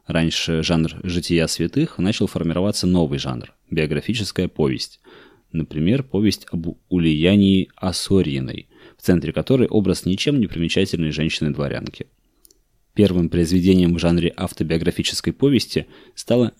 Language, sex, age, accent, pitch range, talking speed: Russian, male, 20-39, native, 80-95 Hz, 110 wpm